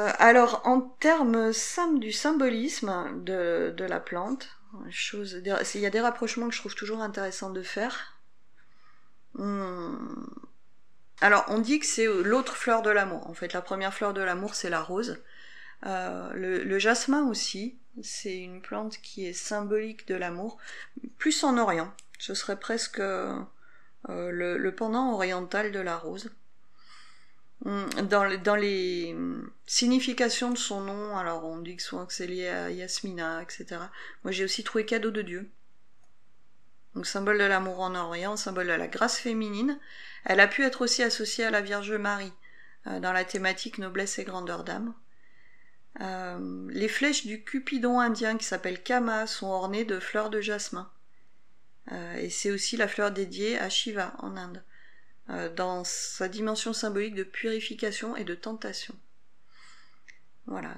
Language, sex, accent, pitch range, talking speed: French, female, French, 190-235 Hz, 155 wpm